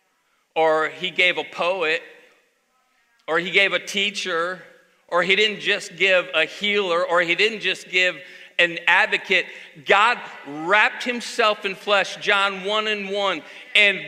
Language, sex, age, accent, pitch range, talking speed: English, male, 40-59, American, 180-245 Hz, 145 wpm